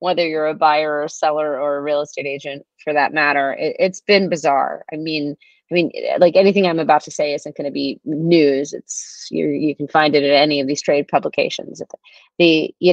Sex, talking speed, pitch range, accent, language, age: female, 220 wpm, 155-185 Hz, American, English, 30-49